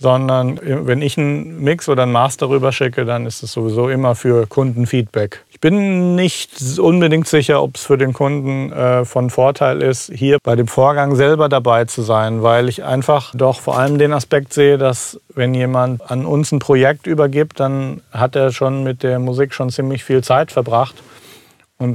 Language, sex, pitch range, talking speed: German, male, 130-155 Hz, 185 wpm